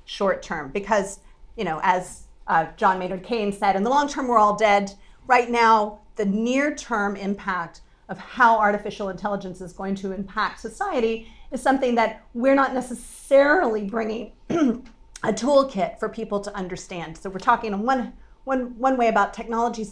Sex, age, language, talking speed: female, 40-59, English, 165 wpm